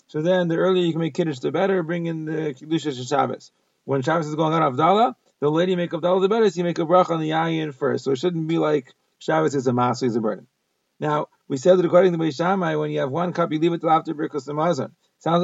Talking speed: 265 wpm